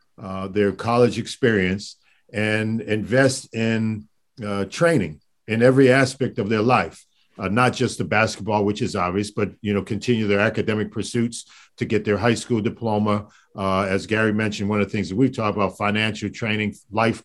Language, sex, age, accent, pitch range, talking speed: English, male, 50-69, American, 100-120 Hz, 175 wpm